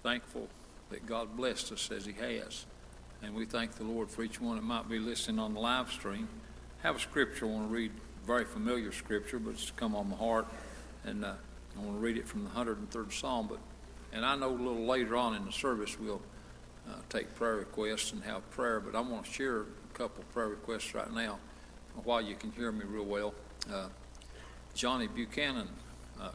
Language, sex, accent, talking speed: English, male, American, 210 wpm